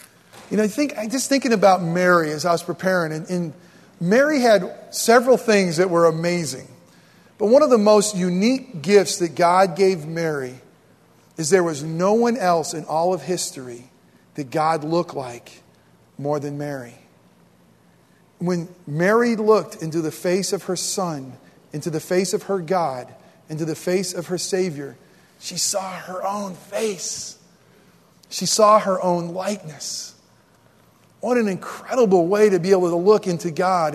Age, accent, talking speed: 40-59, American, 160 wpm